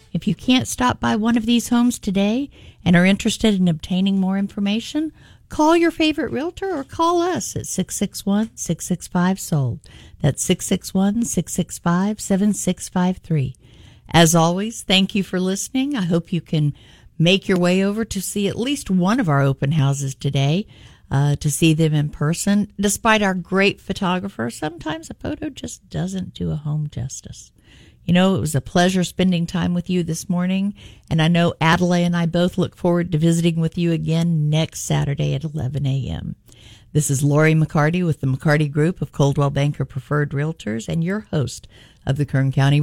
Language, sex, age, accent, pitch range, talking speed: English, female, 50-69, American, 145-195 Hz, 170 wpm